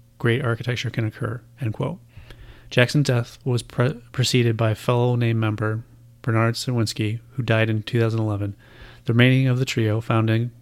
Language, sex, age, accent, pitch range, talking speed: English, male, 30-49, American, 115-120 Hz, 155 wpm